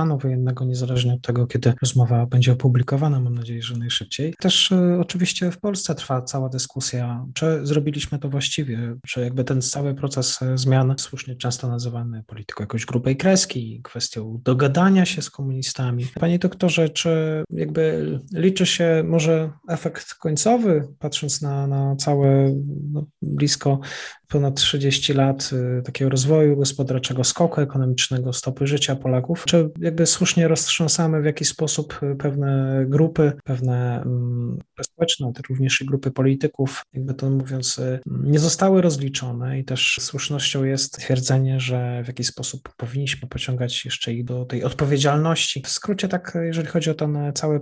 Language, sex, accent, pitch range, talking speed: Polish, male, native, 130-155 Hz, 145 wpm